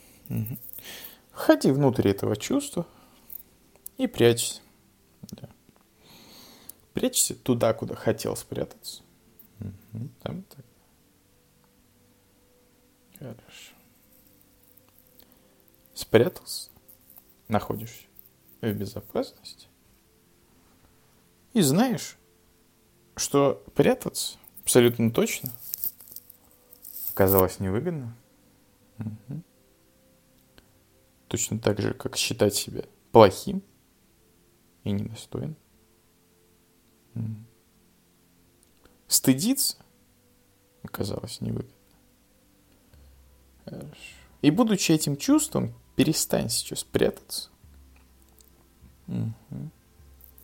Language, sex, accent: Russian, male, native